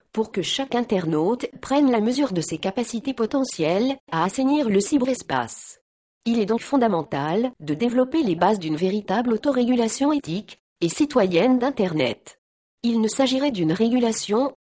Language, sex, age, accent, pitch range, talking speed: French, female, 40-59, French, 190-265 Hz, 145 wpm